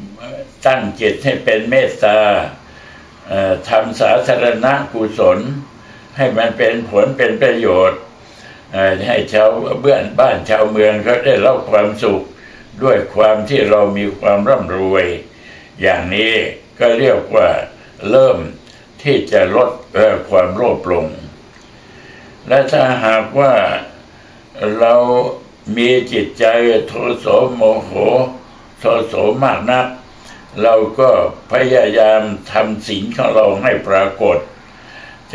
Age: 60-79